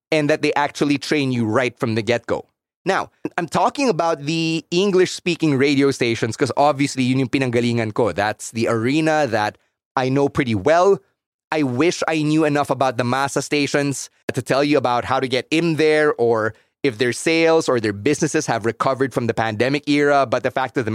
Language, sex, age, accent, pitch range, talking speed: English, male, 30-49, Filipino, 115-145 Hz, 200 wpm